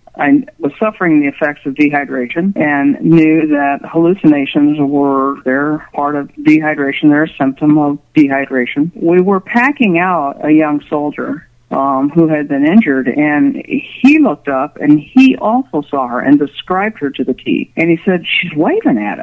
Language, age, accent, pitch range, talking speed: English, 50-69, American, 135-170 Hz, 170 wpm